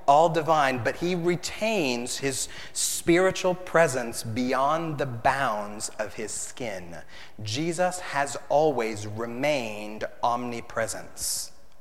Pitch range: 110-140 Hz